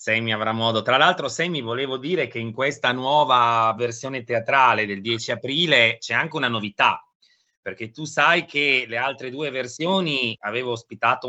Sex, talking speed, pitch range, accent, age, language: male, 165 wpm, 115-145 Hz, native, 30-49, Italian